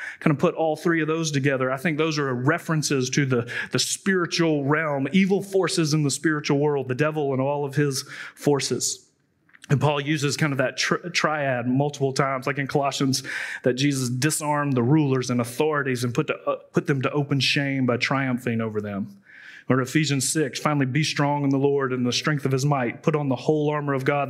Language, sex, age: English, male, 30-49